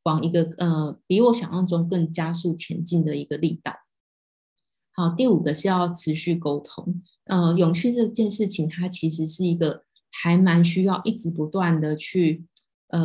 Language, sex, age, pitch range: Chinese, female, 20-39, 165-190 Hz